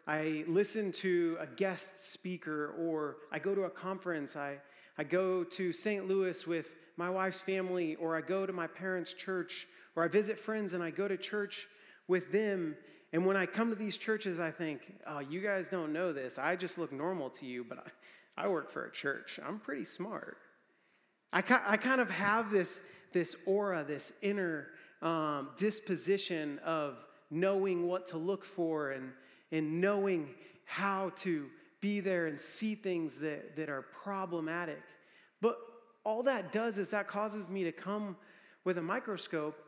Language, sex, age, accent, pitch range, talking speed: English, male, 30-49, American, 165-200 Hz, 175 wpm